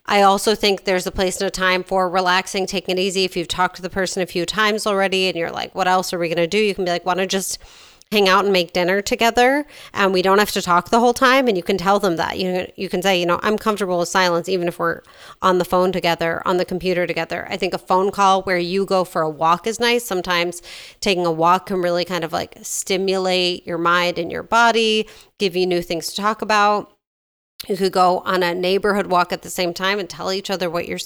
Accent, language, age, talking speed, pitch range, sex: American, English, 30-49, 260 wpm, 180-205 Hz, female